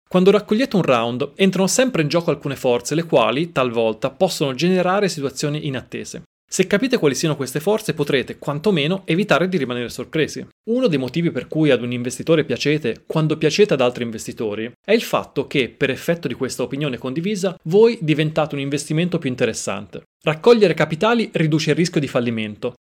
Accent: native